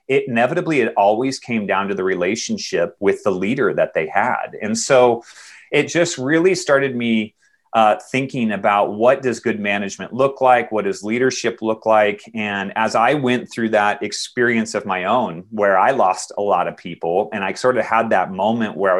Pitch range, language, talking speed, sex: 105-135 Hz, English, 195 wpm, male